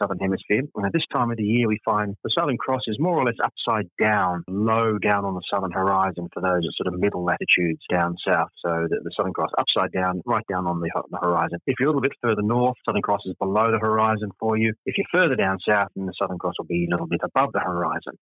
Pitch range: 95-125 Hz